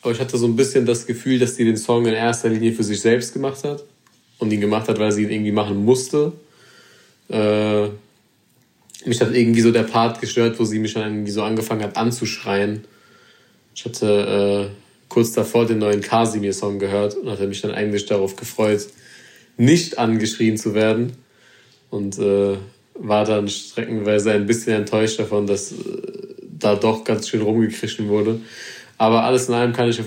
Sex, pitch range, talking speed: male, 105-115 Hz, 180 wpm